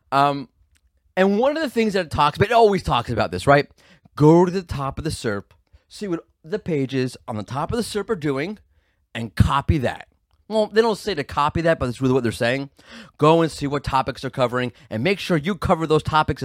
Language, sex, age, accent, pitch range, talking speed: English, male, 30-49, American, 115-185 Hz, 235 wpm